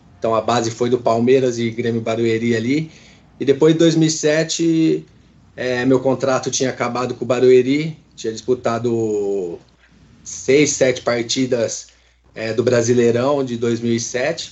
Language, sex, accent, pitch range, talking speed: Portuguese, male, Brazilian, 115-135 Hz, 130 wpm